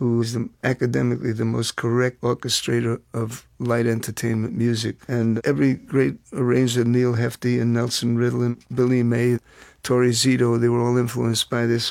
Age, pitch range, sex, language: 50-69, 115-125 Hz, male, Chinese